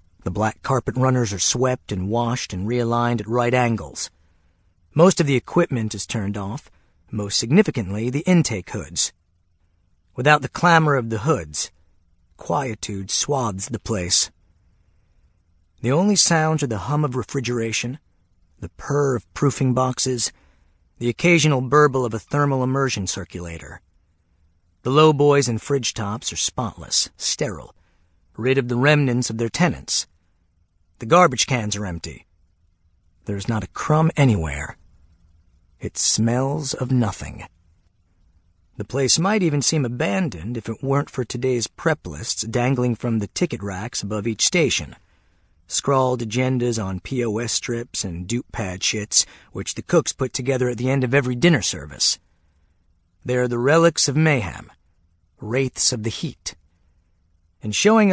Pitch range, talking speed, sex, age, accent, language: 85-135 Hz, 145 wpm, male, 40-59, American, English